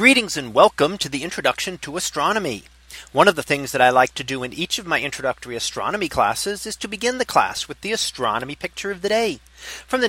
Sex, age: male, 40-59